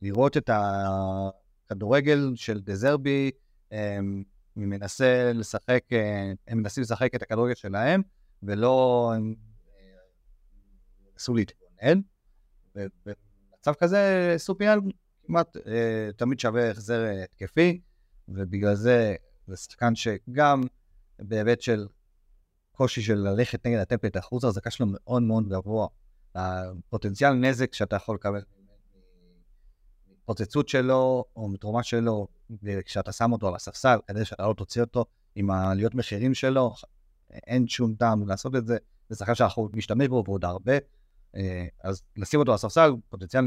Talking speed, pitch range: 115 wpm, 95-125 Hz